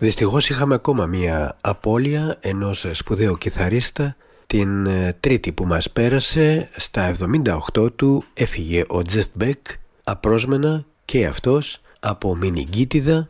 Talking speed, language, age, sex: 115 wpm, Greek, 60-79, male